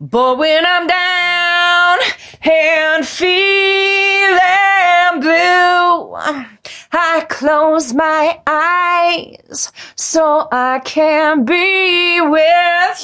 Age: 30-49